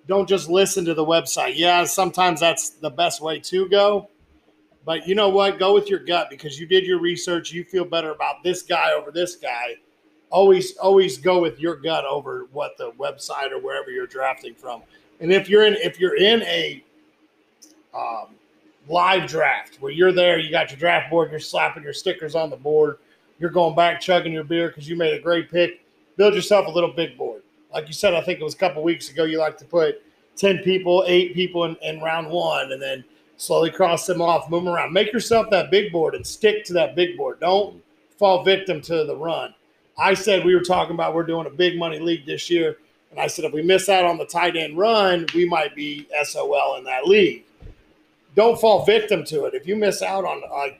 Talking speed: 220 wpm